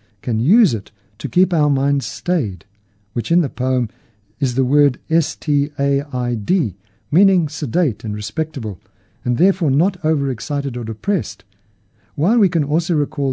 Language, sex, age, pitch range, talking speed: English, male, 50-69, 105-150 Hz, 140 wpm